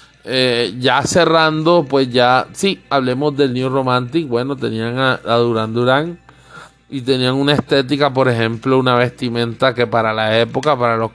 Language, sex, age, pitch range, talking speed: Spanish, male, 20-39, 115-140 Hz, 150 wpm